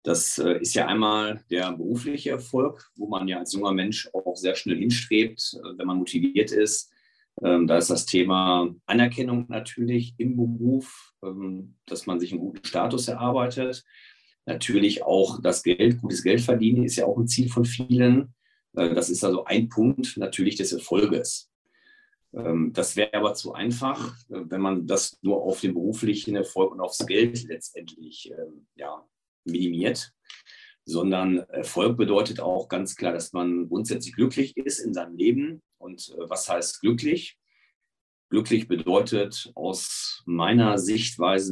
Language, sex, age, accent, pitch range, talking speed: German, male, 40-59, German, 95-125 Hz, 145 wpm